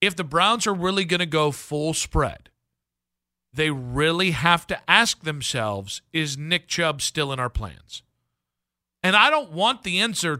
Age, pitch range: 50-69, 130-195 Hz